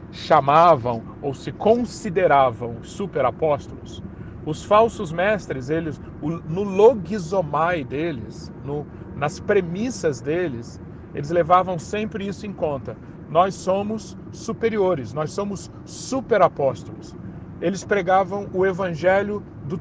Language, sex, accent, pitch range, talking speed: Portuguese, male, Brazilian, 150-205 Hz, 95 wpm